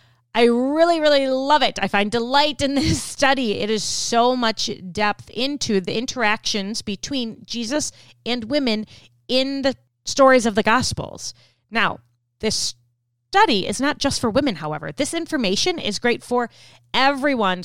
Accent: American